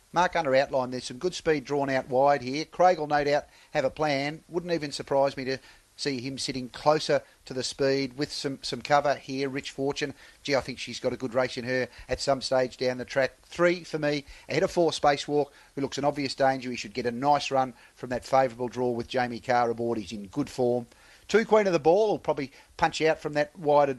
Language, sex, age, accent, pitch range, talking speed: English, male, 40-59, Australian, 130-150 Hz, 240 wpm